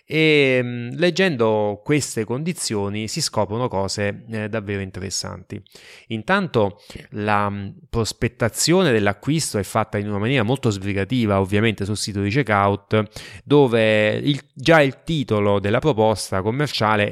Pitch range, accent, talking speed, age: 100-130 Hz, native, 110 wpm, 20-39